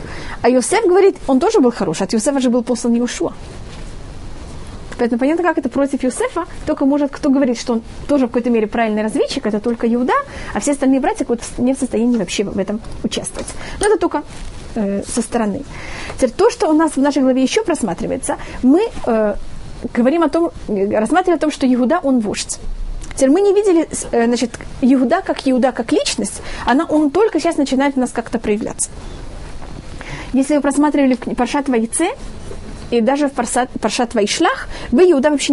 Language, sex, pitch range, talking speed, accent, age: Russian, female, 240-310 Hz, 180 wpm, native, 30-49